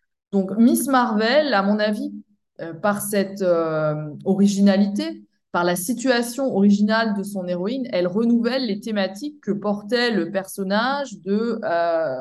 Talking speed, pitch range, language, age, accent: 140 wpm, 185-235 Hz, French, 20-39, French